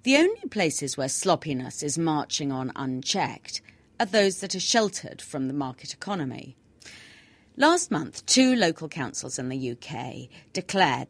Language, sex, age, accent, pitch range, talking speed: English, female, 40-59, British, 130-190 Hz, 145 wpm